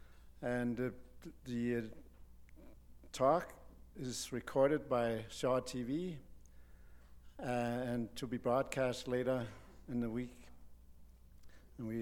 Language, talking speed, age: English, 105 wpm, 60-79